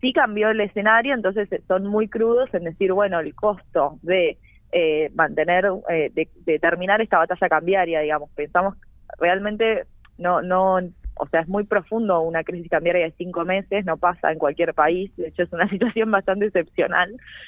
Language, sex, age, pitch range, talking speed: Spanish, female, 20-39, 165-205 Hz, 175 wpm